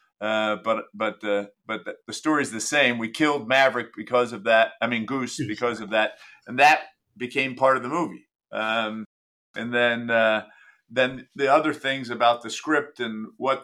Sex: male